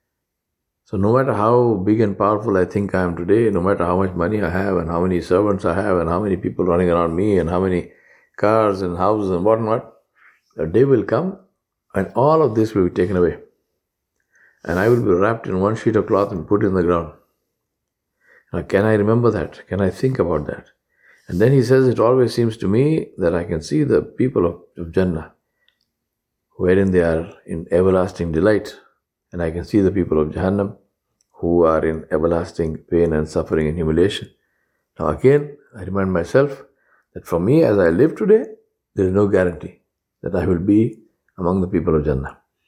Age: 50-69